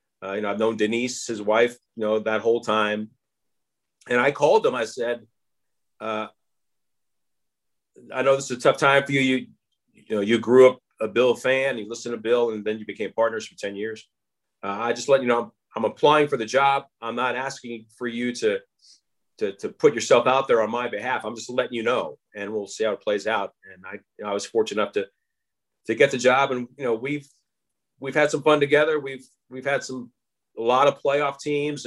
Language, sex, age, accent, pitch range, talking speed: English, male, 40-59, American, 120-150 Hz, 225 wpm